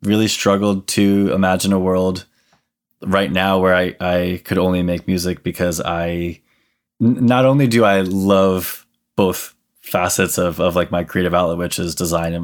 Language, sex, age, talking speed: English, male, 20-39, 165 wpm